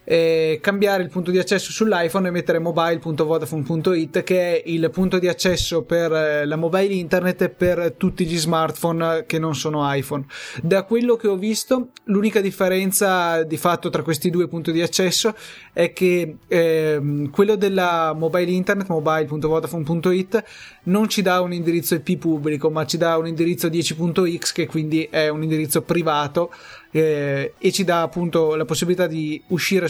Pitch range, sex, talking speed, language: 155-180 Hz, male, 160 wpm, Italian